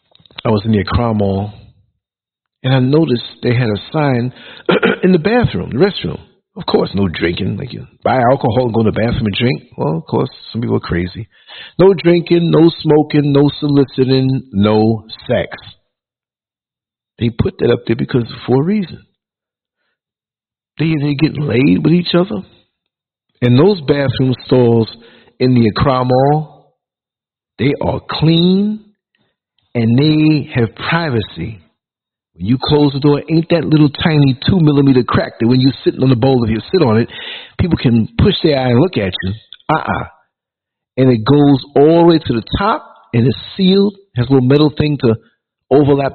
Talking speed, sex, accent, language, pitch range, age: 170 wpm, male, American, English, 115-155 Hz, 50-69